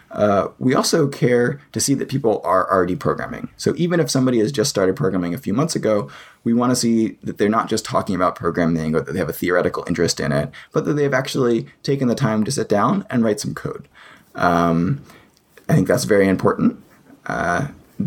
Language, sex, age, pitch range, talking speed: English, male, 20-39, 90-125 Hz, 215 wpm